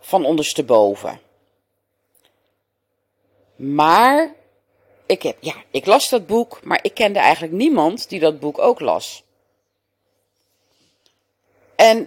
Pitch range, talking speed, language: 160-235 Hz, 105 wpm, Dutch